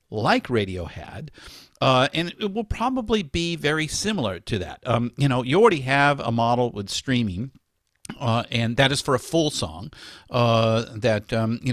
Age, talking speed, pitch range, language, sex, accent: 50-69, 180 wpm, 105-130 Hz, English, male, American